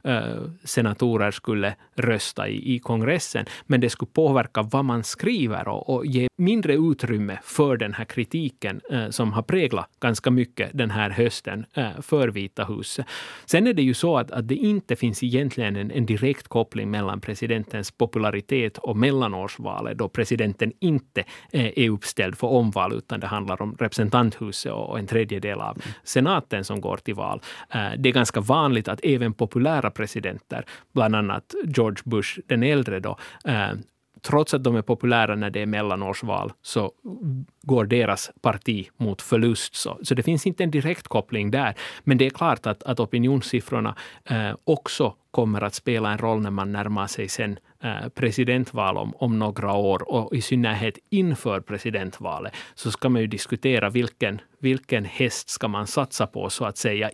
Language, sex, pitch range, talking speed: Swedish, male, 105-130 Hz, 170 wpm